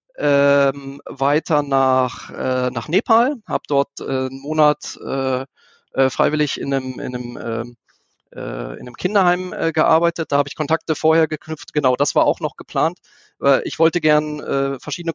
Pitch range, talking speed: 135-165 Hz, 150 wpm